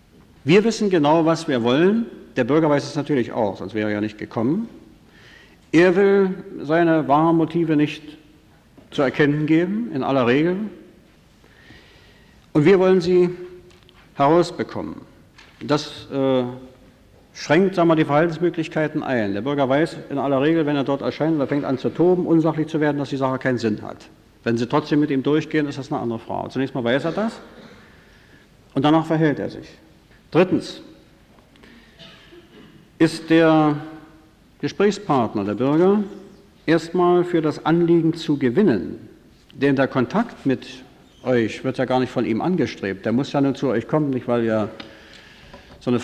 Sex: male